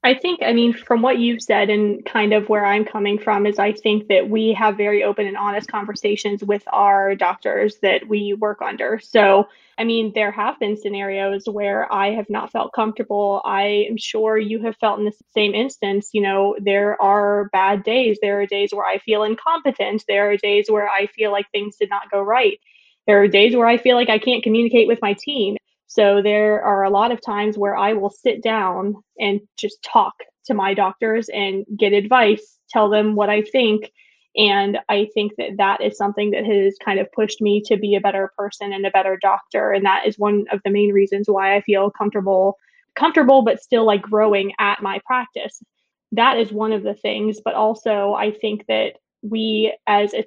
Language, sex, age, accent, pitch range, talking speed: English, female, 20-39, American, 200-220 Hz, 210 wpm